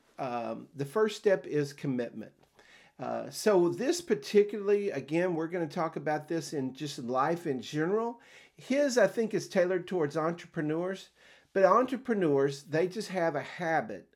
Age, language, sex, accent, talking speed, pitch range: 50-69, English, male, American, 155 wpm, 140-190 Hz